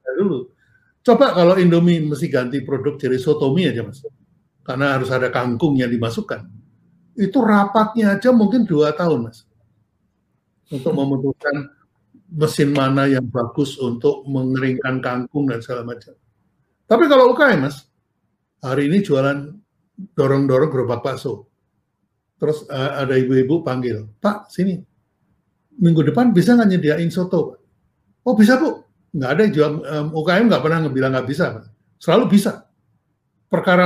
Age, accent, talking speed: 50-69, native, 135 wpm